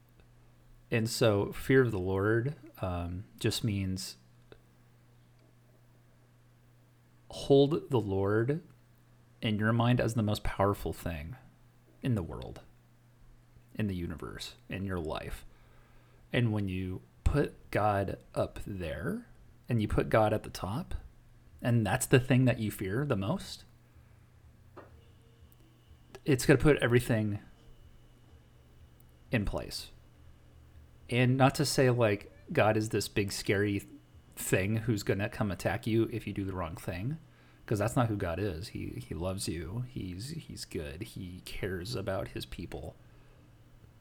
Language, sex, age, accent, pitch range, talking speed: English, male, 30-49, American, 95-120 Hz, 135 wpm